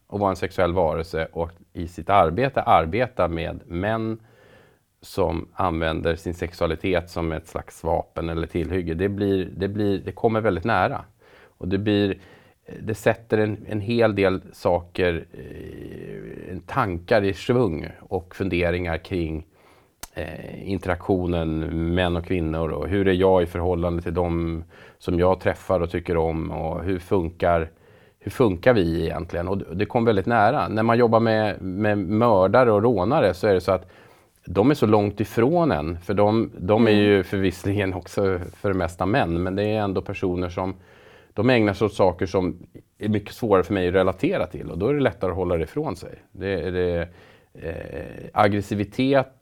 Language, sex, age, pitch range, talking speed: Swedish, male, 30-49, 85-105 Hz, 175 wpm